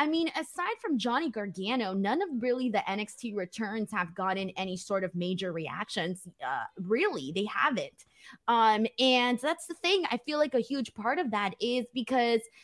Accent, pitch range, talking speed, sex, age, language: American, 195-260 Hz, 180 wpm, female, 20-39, English